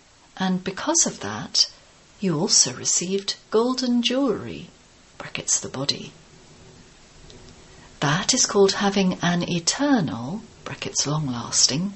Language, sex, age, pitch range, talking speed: English, female, 40-59, 165-235 Hz, 100 wpm